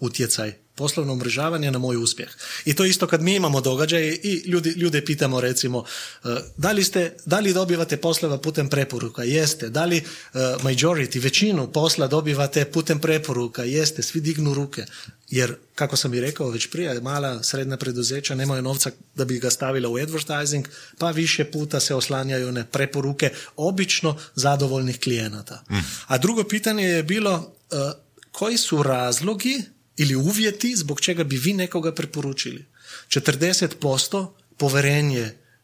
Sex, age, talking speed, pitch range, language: male, 30-49, 150 wpm, 130-170 Hz, Croatian